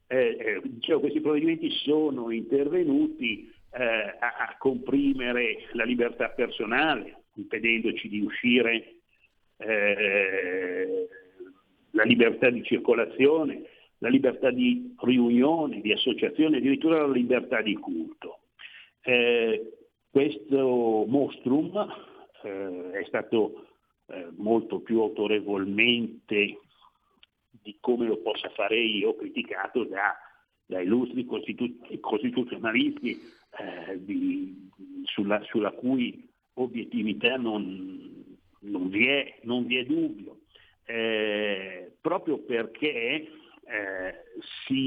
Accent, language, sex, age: native, Italian, male, 60-79